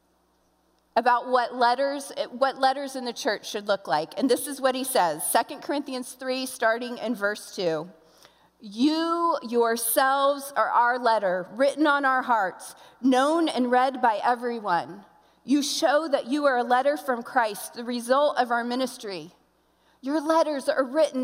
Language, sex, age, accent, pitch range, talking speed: English, female, 40-59, American, 240-290 Hz, 160 wpm